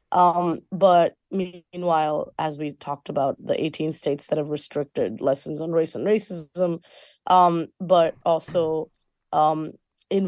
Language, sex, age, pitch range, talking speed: English, female, 20-39, 155-180 Hz, 135 wpm